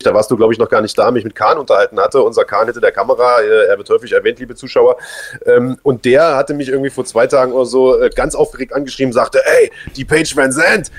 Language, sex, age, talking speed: German, male, 30-49, 255 wpm